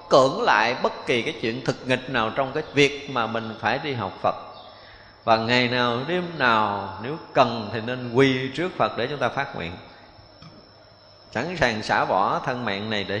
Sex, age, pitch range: male, 20-39, 110-150 Hz